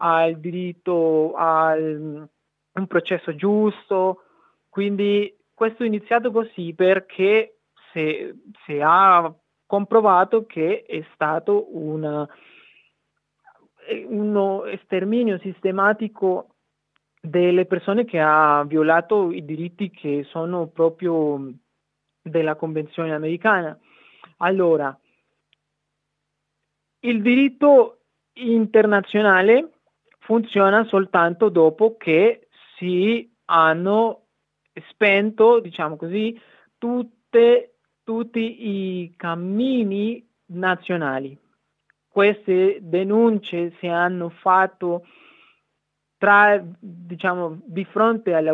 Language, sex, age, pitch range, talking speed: Italian, male, 30-49, 165-215 Hz, 70 wpm